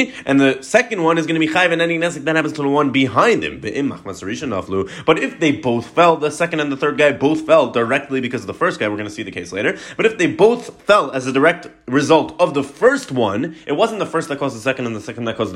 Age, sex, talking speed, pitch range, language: 20-39, male, 275 wpm, 120-165 Hz, English